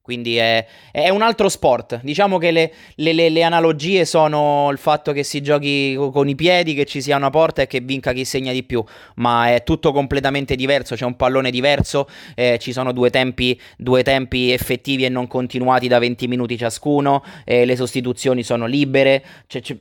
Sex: male